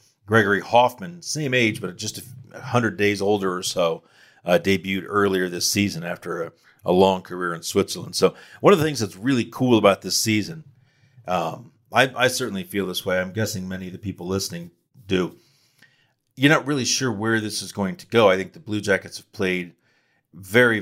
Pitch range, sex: 95-110 Hz, male